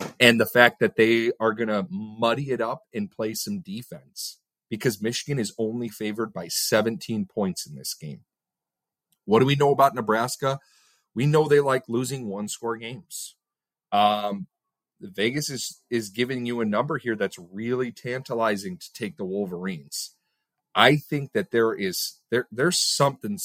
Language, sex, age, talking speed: English, male, 30-49, 160 wpm